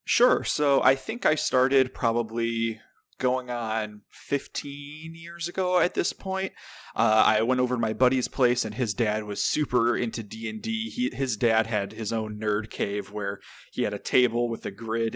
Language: English